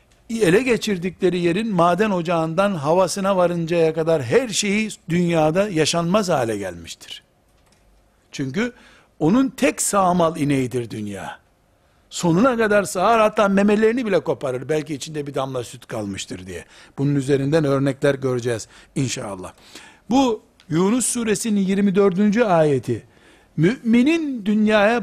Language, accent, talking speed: Turkish, native, 110 wpm